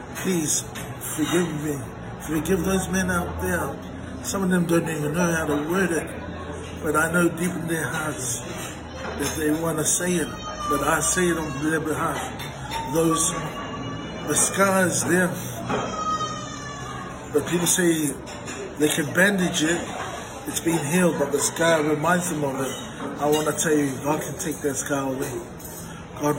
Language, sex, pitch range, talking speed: English, male, 145-170 Hz, 165 wpm